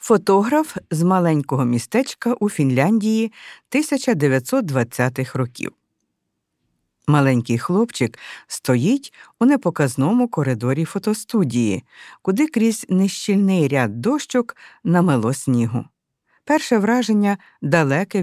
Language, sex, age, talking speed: Ukrainian, female, 50-69, 80 wpm